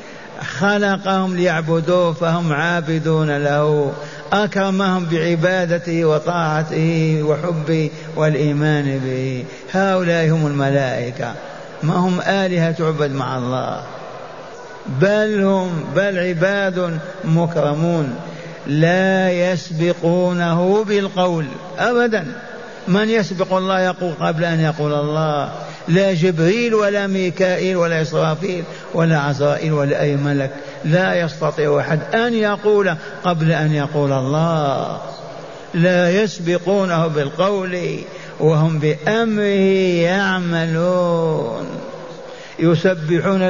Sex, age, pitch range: male, 50-69, 155-190 Hz